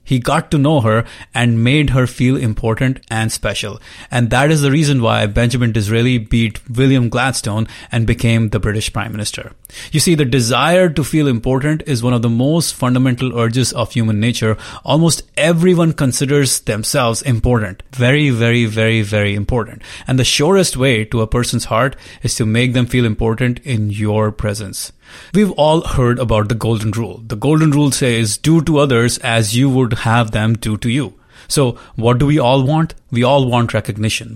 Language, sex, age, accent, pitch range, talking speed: English, male, 30-49, Indian, 110-135 Hz, 185 wpm